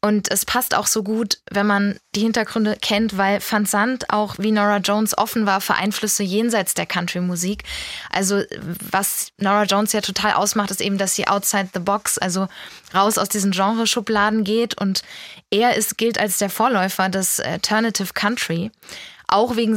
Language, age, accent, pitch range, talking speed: German, 20-39, German, 195-220 Hz, 165 wpm